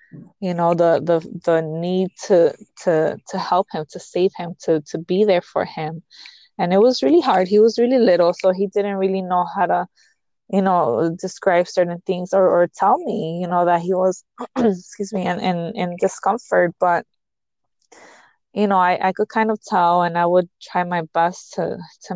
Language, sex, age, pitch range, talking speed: English, female, 20-39, 175-205 Hz, 200 wpm